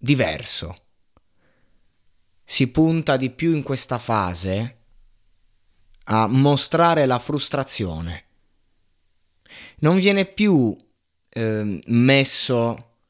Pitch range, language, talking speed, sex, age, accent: 95-130 Hz, Italian, 80 wpm, male, 20-39, native